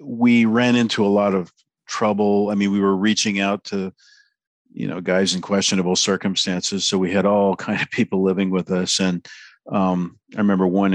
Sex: male